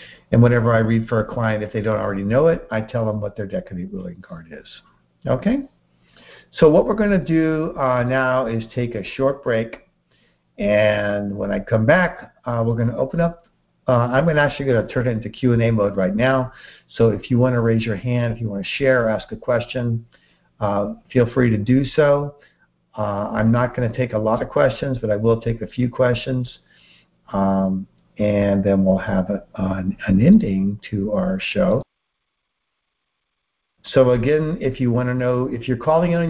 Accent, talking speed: American, 205 wpm